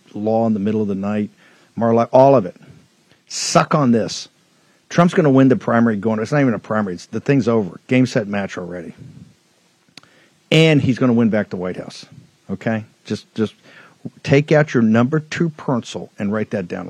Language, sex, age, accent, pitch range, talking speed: English, male, 50-69, American, 115-140 Hz, 200 wpm